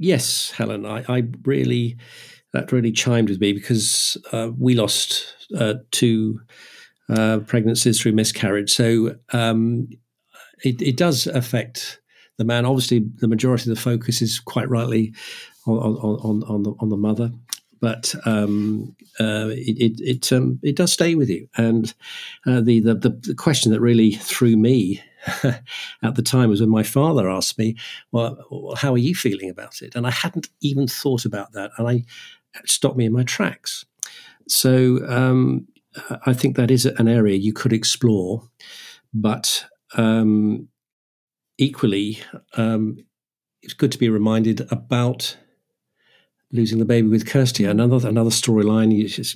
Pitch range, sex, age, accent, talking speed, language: 110-125 Hz, male, 50-69, British, 145 wpm, English